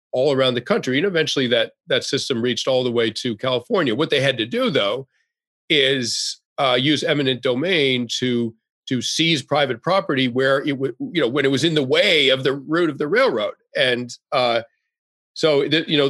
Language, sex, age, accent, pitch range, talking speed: English, male, 40-59, American, 125-165 Hz, 200 wpm